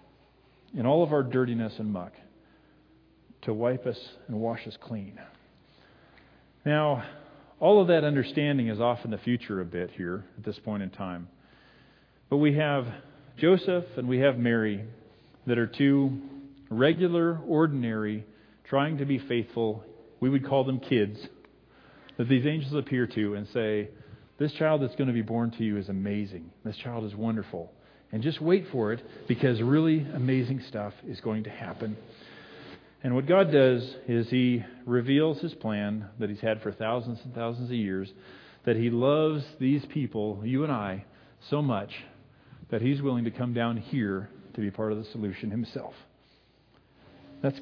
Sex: male